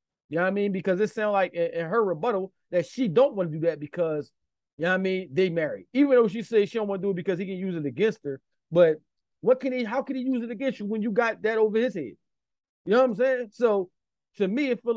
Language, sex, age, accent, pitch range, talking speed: English, male, 30-49, American, 180-230 Hz, 295 wpm